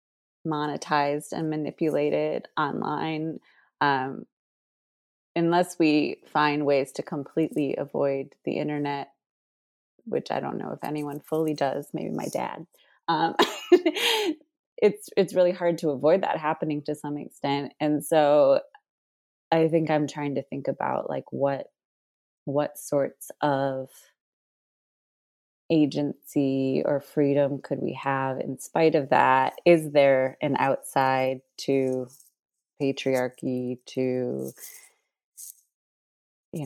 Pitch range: 135-155 Hz